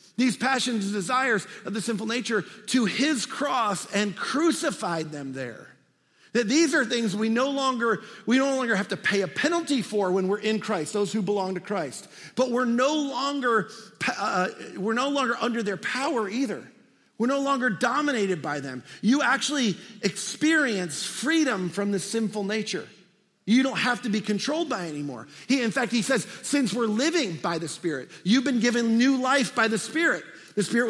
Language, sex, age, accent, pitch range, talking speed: English, male, 50-69, American, 190-245 Hz, 185 wpm